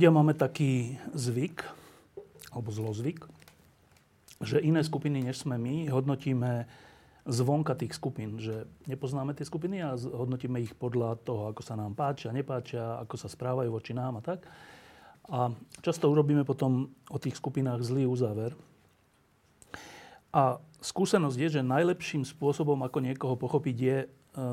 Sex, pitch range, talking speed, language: male, 120-145 Hz, 135 wpm, Slovak